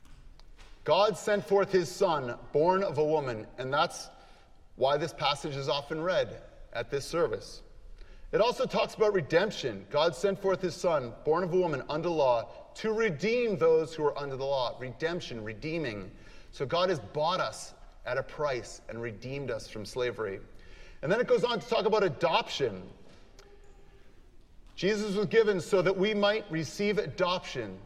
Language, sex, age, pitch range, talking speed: English, male, 30-49, 140-210 Hz, 165 wpm